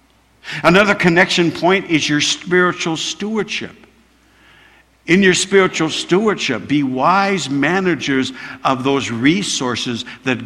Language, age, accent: English, 60-79, American